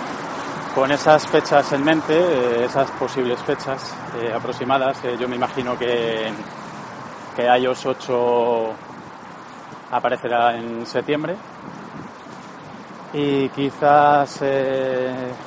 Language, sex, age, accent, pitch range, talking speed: Spanish, male, 30-49, Spanish, 115-140 Hz, 95 wpm